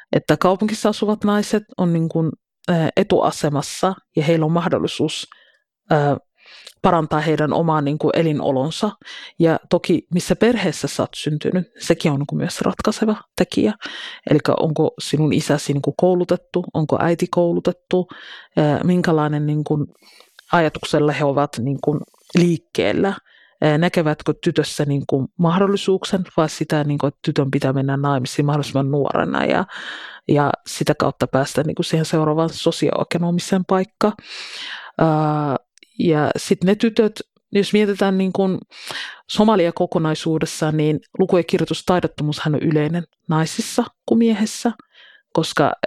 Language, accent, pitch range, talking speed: Finnish, native, 150-185 Hz, 115 wpm